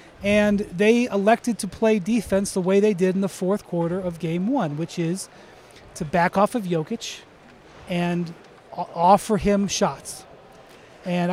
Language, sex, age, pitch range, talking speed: English, male, 30-49, 175-210 Hz, 155 wpm